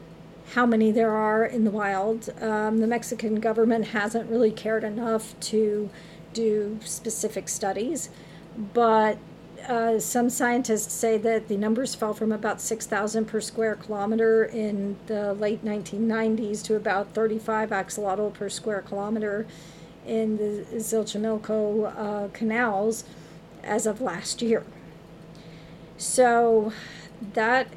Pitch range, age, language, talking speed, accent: 205-225 Hz, 50-69, English, 120 wpm, American